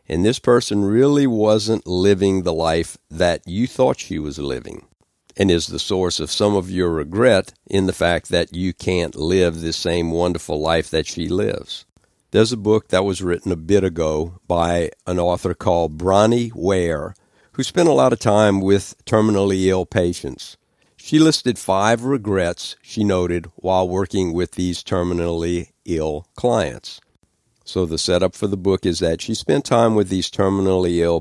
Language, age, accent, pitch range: English, 60-79, American, 85-100 Hz